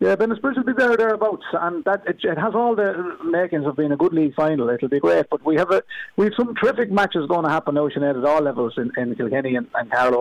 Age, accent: 30-49, Irish